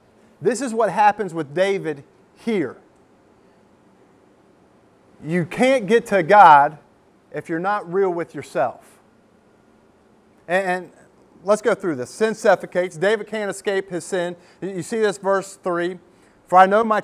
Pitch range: 165-205 Hz